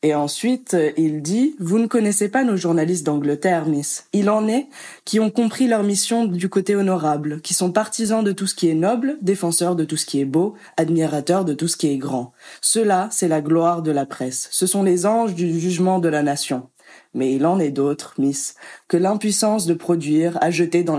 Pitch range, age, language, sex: 155-195 Hz, 20-39, French, female